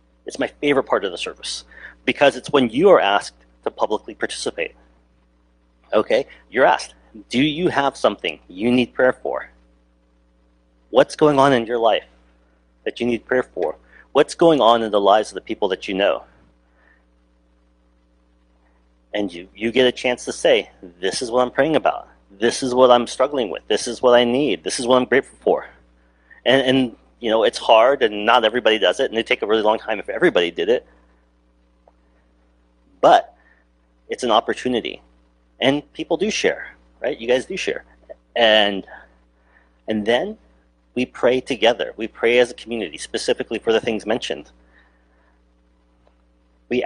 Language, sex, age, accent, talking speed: English, male, 40-59, American, 170 wpm